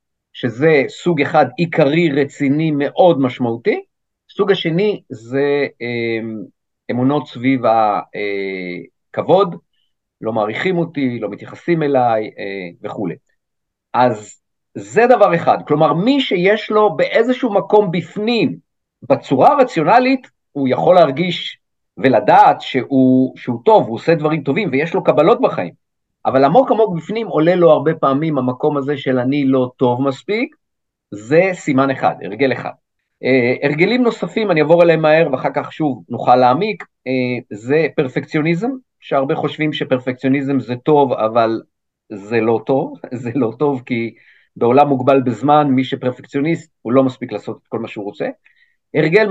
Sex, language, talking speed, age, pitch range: male, Hebrew, 140 wpm, 50-69, 125-175 Hz